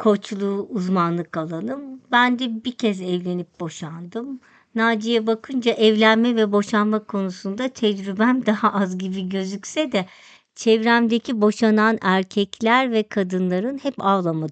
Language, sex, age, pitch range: Turkish, male, 50-69, 185-235 Hz